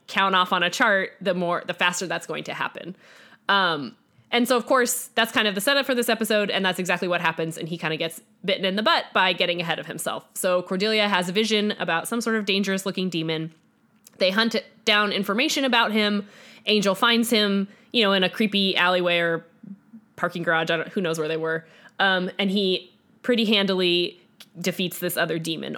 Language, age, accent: English, 20-39, American